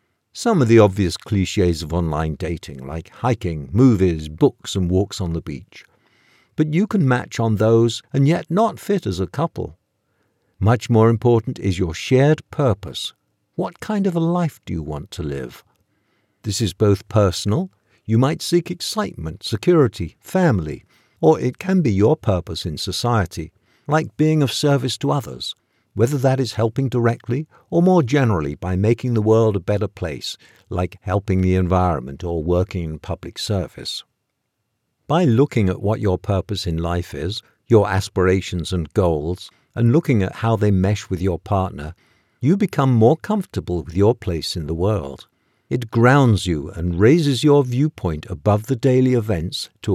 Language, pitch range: English, 90-125 Hz